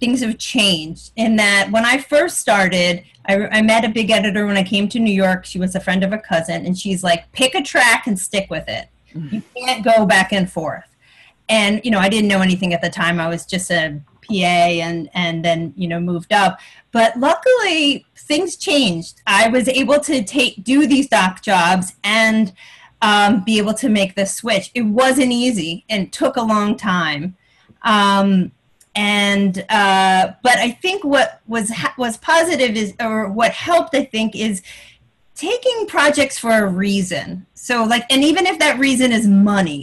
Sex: female